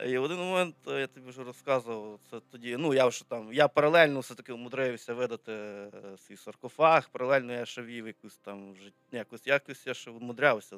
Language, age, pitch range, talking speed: Ukrainian, 20-39, 105-140 Hz, 175 wpm